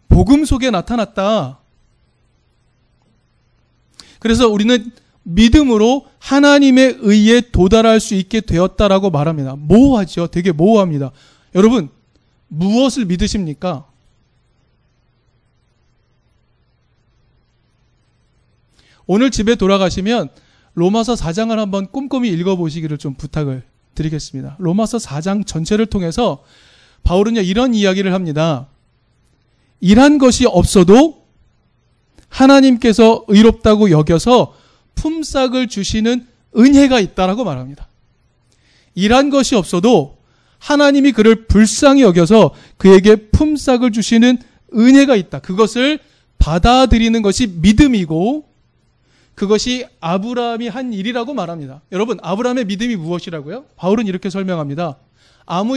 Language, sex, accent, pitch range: Korean, male, native, 175-245 Hz